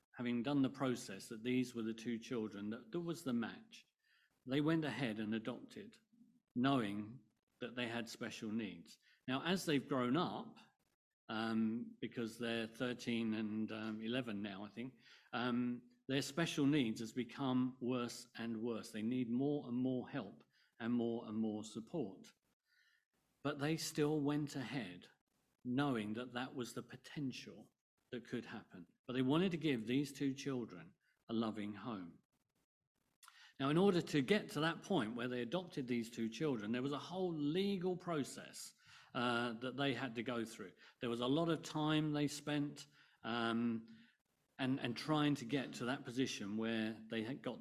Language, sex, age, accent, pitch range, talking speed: English, male, 50-69, British, 115-145 Hz, 170 wpm